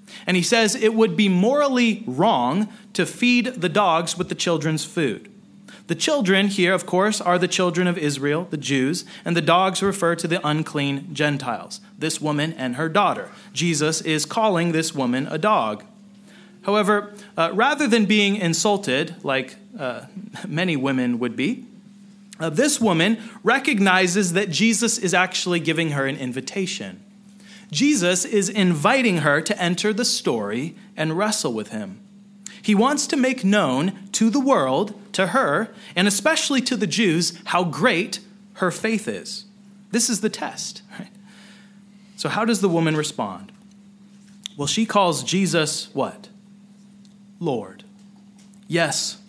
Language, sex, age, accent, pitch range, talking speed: English, male, 30-49, American, 170-210 Hz, 145 wpm